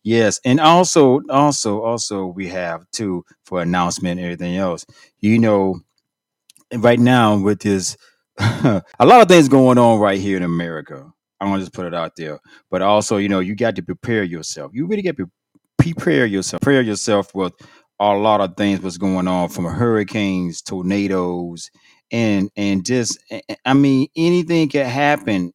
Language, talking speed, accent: English, 170 wpm, American